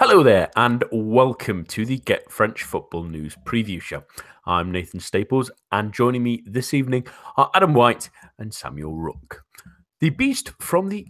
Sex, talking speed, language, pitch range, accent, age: male, 160 wpm, English, 90-135 Hz, British, 30-49